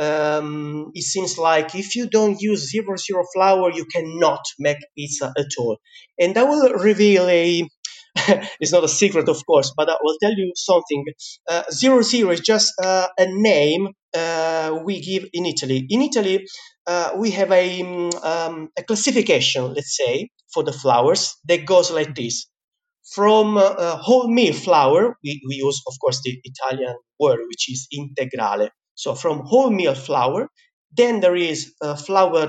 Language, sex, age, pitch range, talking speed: English, male, 30-49, 150-220 Hz, 165 wpm